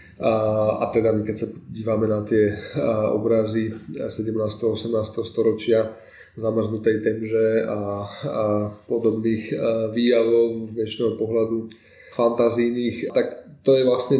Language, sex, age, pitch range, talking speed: Slovak, male, 20-39, 110-130 Hz, 125 wpm